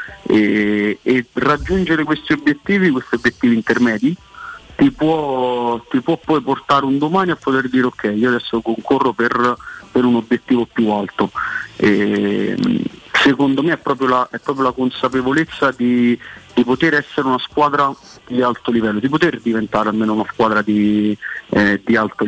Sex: male